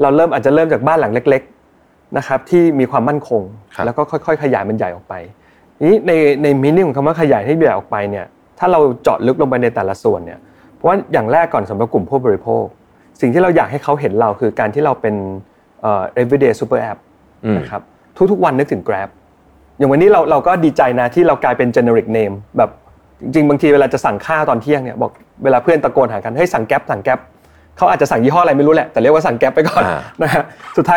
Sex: male